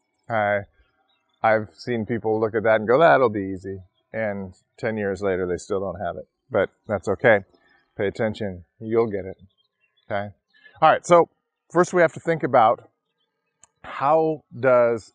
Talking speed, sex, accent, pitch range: 160 wpm, male, American, 105-145 Hz